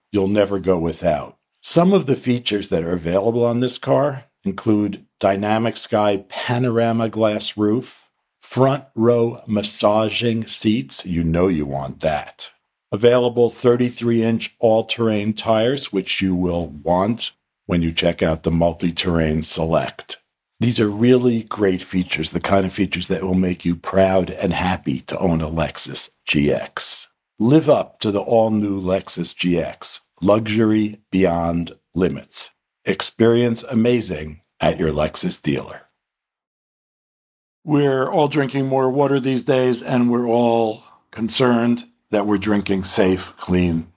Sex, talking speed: male, 130 wpm